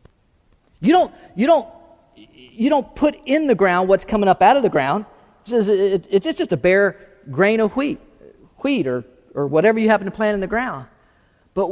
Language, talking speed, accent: English, 205 wpm, American